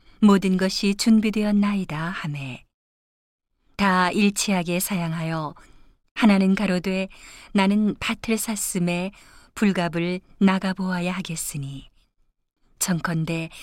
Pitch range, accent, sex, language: 170-205 Hz, native, female, Korean